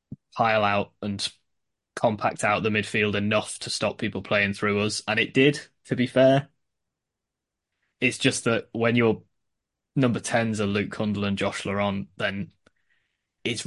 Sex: male